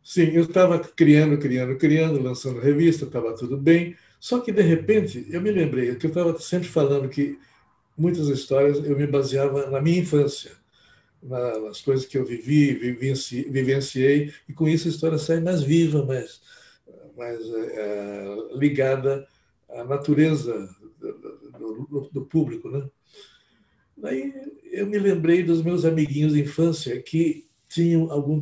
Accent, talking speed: Brazilian, 145 wpm